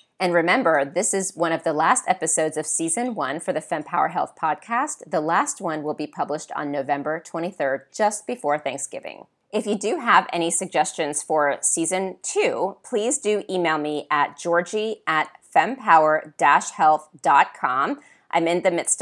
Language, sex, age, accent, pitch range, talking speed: English, female, 30-49, American, 155-205 Hz, 160 wpm